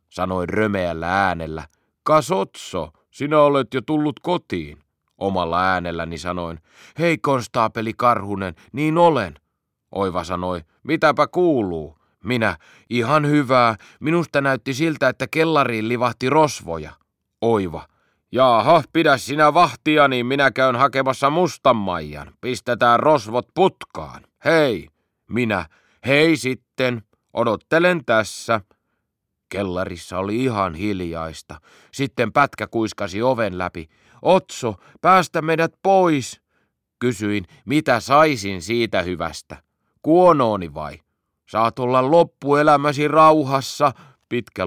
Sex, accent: male, native